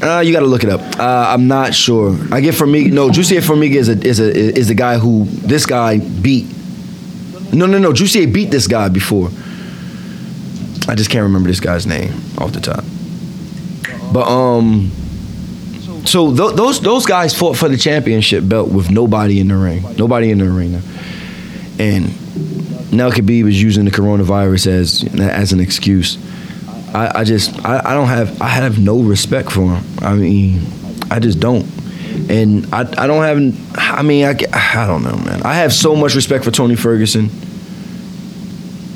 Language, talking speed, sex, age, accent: English, 180 wpm, male, 20-39, American